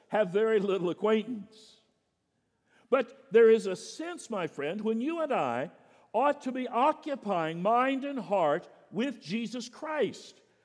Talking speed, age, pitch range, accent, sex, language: 140 wpm, 60-79, 175-255 Hz, American, male, English